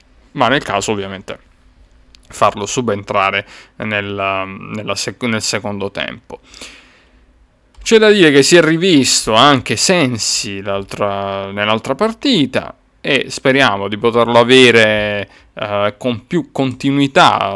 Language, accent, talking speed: Italian, native, 110 wpm